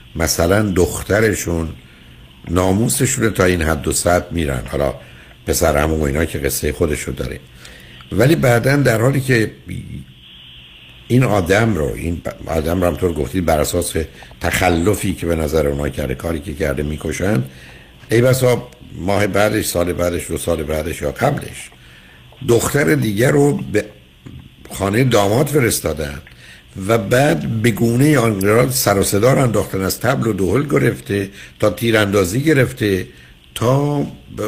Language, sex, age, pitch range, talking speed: Persian, male, 60-79, 75-120 Hz, 135 wpm